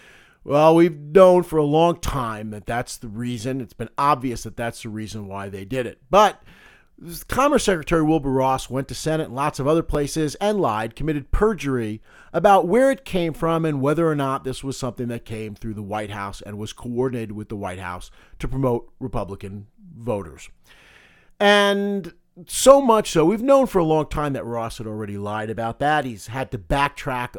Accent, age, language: American, 40-59, English